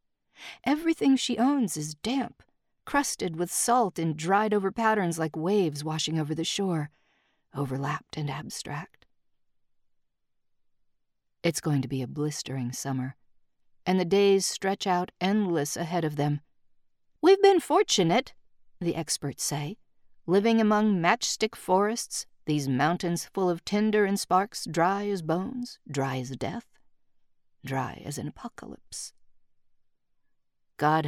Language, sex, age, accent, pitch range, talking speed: English, female, 50-69, American, 150-210 Hz, 125 wpm